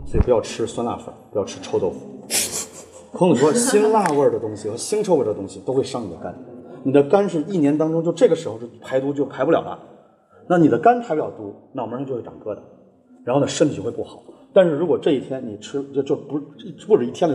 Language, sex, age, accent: Chinese, male, 30-49, native